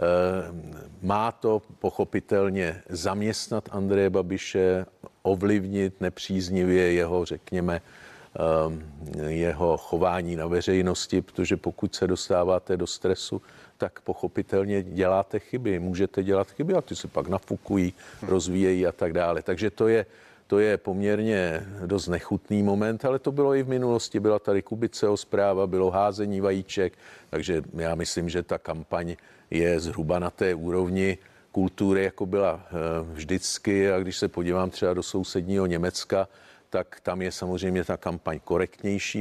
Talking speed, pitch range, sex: 135 wpm, 90-105 Hz, male